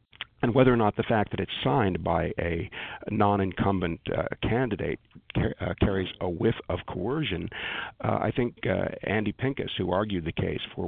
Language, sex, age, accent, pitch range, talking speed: English, male, 50-69, American, 95-120 Hz, 165 wpm